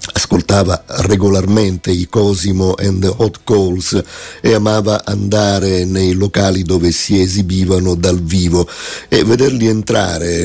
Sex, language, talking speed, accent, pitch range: male, Italian, 120 wpm, native, 95-105 Hz